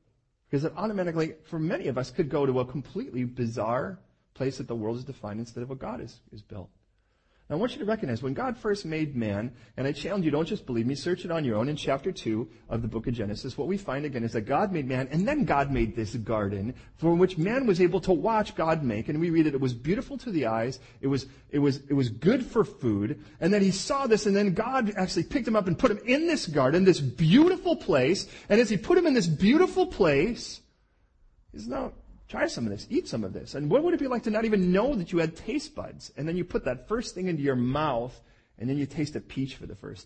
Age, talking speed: 40-59, 260 wpm